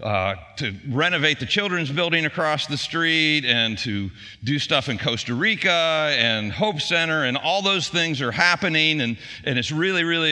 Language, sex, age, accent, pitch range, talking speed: English, male, 50-69, American, 115-155 Hz, 175 wpm